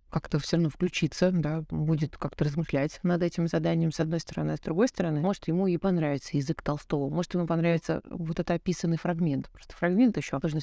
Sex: female